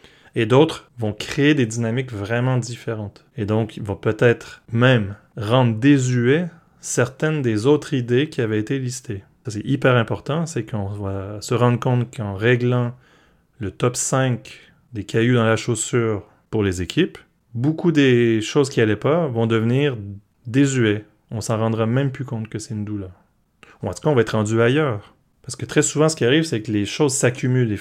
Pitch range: 110-135 Hz